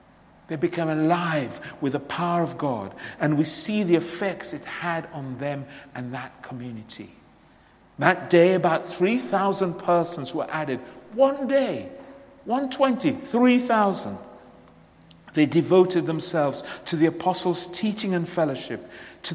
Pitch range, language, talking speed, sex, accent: 140-185 Hz, English, 125 wpm, male, British